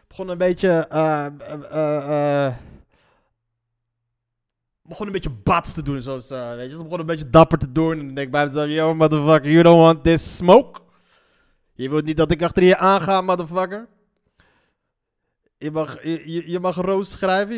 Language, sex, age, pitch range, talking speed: Dutch, male, 20-39, 165-220 Hz, 180 wpm